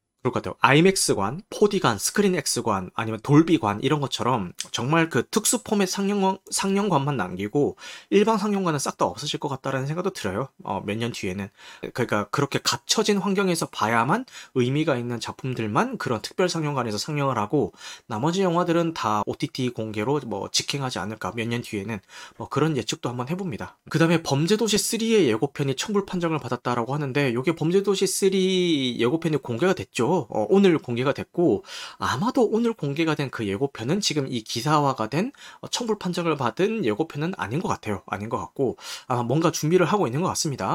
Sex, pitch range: male, 120-180 Hz